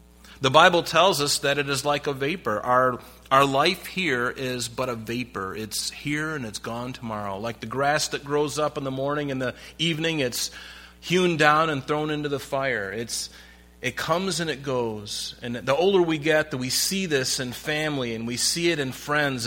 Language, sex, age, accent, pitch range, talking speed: English, male, 40-59, American, 120-155 Hz, 205 wpm